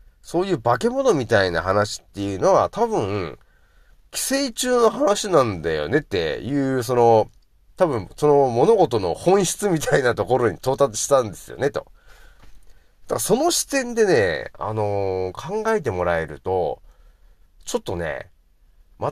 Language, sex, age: Japanese, male, 40-59